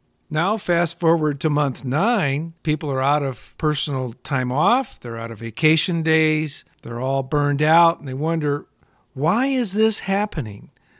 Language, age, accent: English, 50-69, American